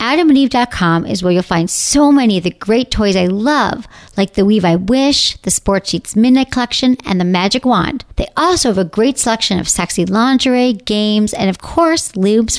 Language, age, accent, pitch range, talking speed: English, 40-59, American, 185-270 Hz, 195 wpm